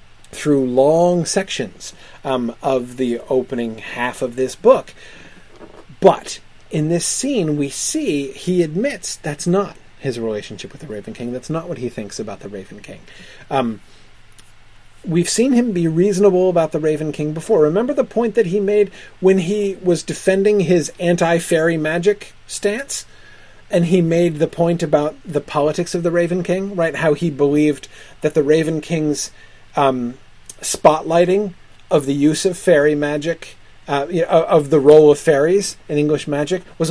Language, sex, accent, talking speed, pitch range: English, male, American, 160 wpm, 130-175 Hz